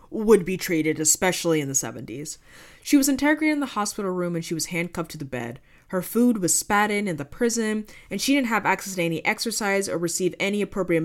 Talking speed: 225 wpm